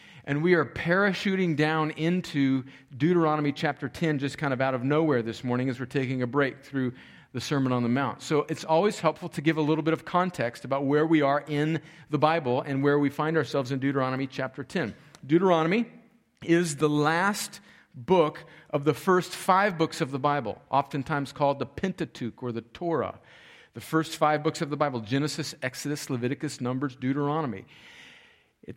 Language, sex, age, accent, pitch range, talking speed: English, male, 50-69, American, 140-180 Hz, 185 wpm